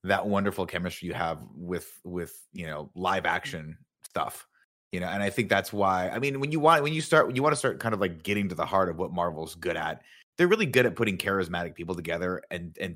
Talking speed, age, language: 250 wpm, 30-49, English